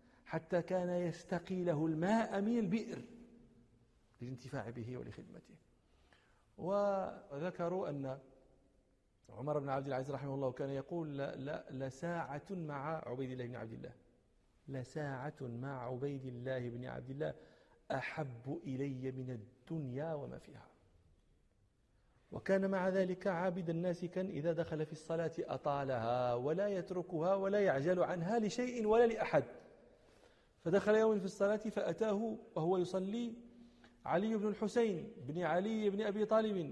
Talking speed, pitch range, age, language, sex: 120 wpm, 135-205 Hz, 50-69, Arabic, male